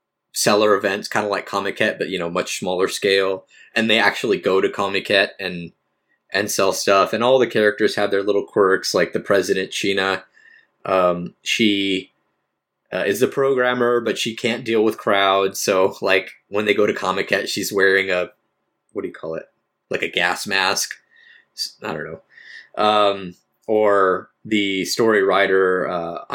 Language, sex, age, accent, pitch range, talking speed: English, male, 20-39, American, 95-125 Hz, 170 wpm